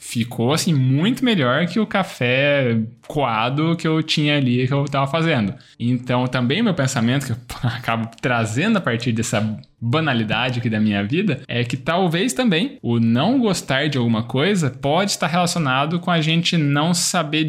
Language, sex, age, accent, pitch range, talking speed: Portuguese, male, 10-29, Brazilian, 120-170 Hz, 170 wpm